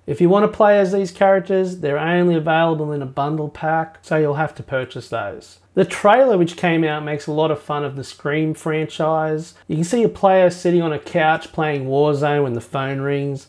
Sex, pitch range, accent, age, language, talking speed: male, 140-170 Hz, Australian, 30-49, English, 225 wpm